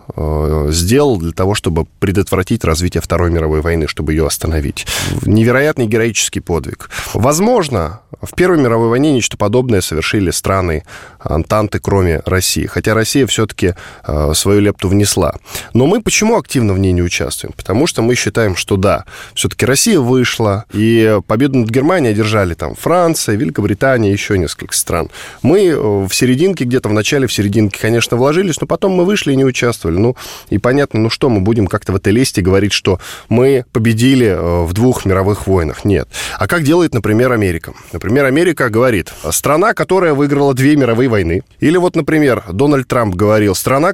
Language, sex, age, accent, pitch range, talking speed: Russian, male, 10-29, native, 95-135 Hz, 160 wpm